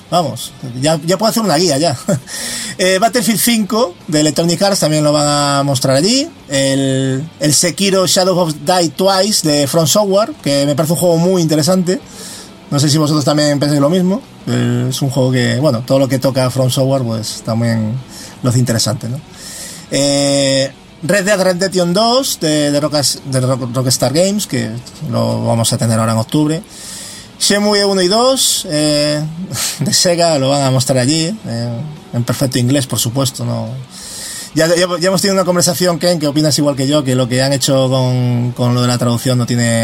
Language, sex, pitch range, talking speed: French, male, 120-170 Hz, 190 wpm